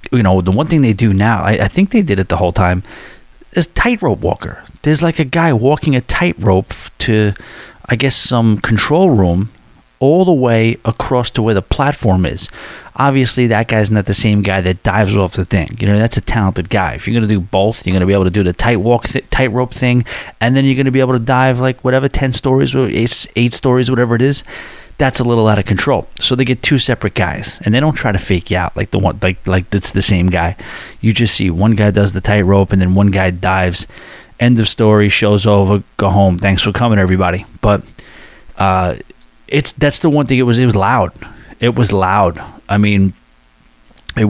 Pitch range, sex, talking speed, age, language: 95-125 Hz, male, 225 wpm, 30-49, English